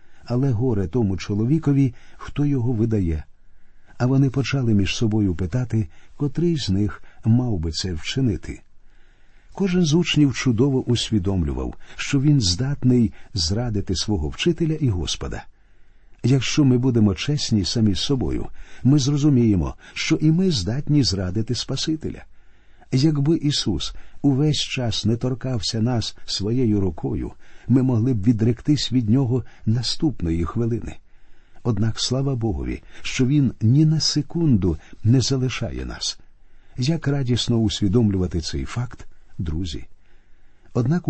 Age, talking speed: 50-69, 120 wpm